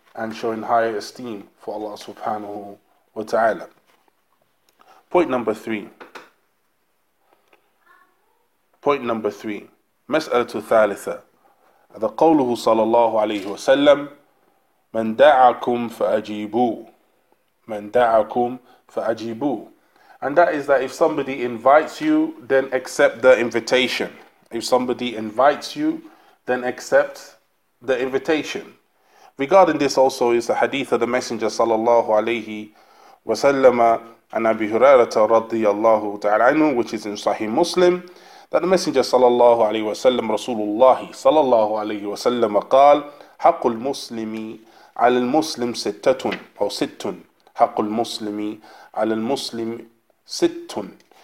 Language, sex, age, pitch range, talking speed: English, male, 20-39, 110-140 Hz, 110 wpm